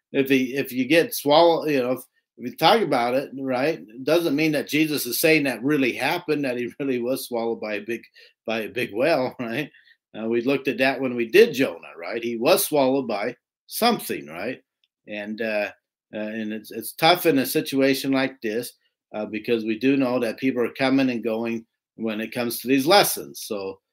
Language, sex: English, male